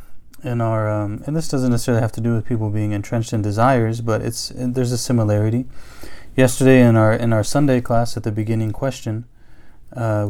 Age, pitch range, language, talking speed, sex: 20-39, 110-125 Hz, English, 190 wpm, male